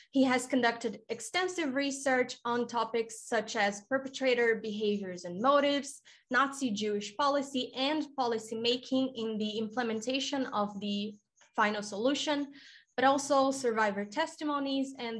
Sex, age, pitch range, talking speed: female, 20-39, 210-270 Hz, 120 wpm